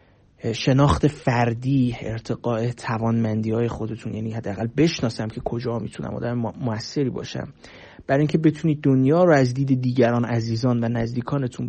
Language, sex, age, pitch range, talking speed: Persian, male, 30-49, 115-140 Hz, 130 wpm